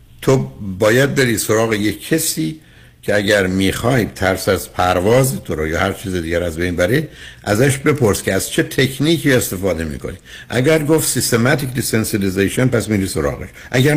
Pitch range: 85-125 Hz